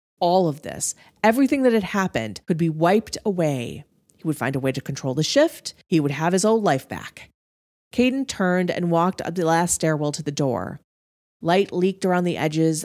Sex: female